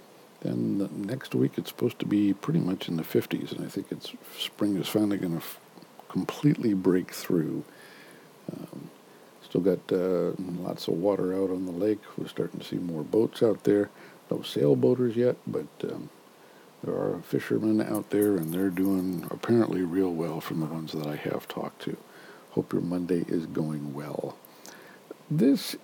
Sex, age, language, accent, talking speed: male, 60-79, English, American, 175 wpm